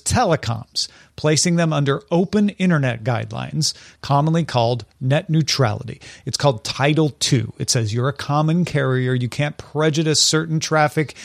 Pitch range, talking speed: 125-175 Hz, 140 wpm